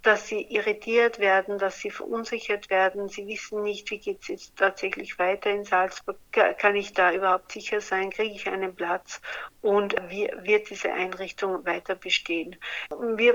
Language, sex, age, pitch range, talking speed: German, female, 60-79, 190-225 Hz, 165 wpm